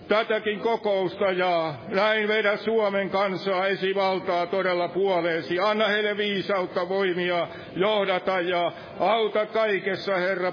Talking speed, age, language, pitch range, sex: 110 wpm, 60-79, Finnish, 140-190 Hz, male